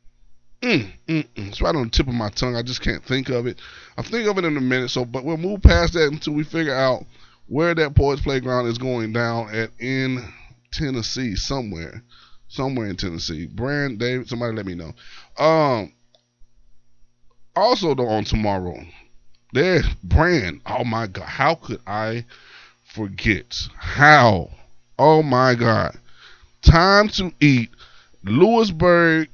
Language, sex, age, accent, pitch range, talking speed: English, male, 20-39, American, 110-145 Hz, 155 wpm